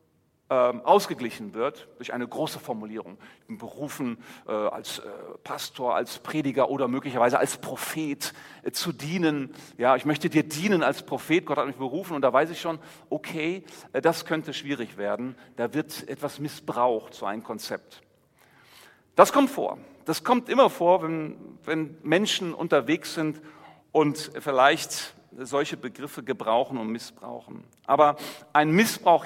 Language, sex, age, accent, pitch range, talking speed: German, male, 40-59, German, 140-175 Hz, 135 wpm